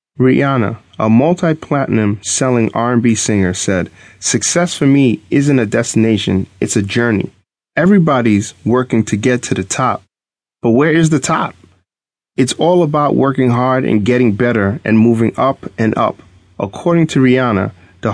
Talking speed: 150 wpm